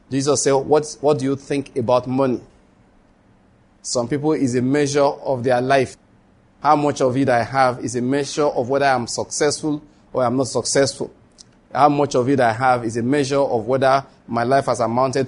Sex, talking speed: male, 195 wpm